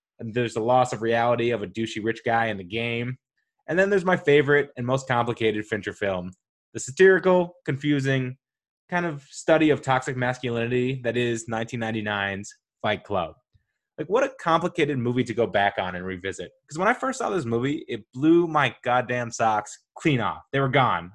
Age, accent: 20-39, American